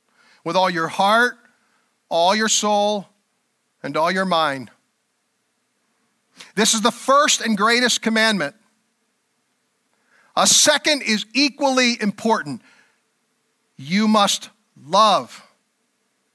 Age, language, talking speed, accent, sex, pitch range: 50-69, English, 95 wpm, American, male, 210-240 Hz